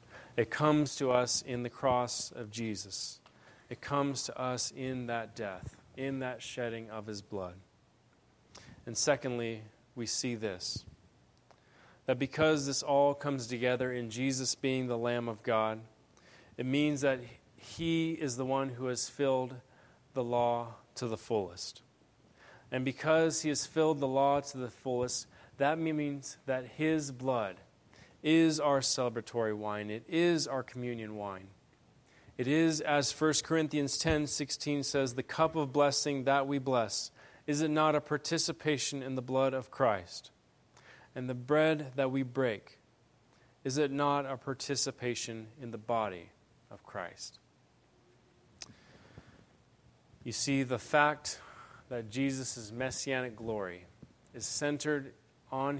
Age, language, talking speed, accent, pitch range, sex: 30-49, English, 140 wpm, American, 120-145 Hz, male